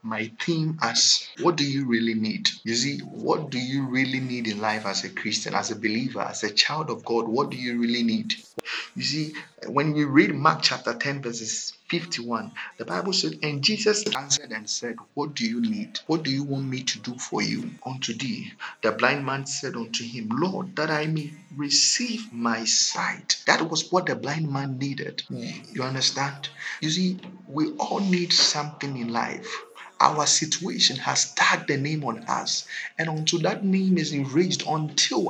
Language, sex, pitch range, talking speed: English, male, 135-190 Hz, 190 wpm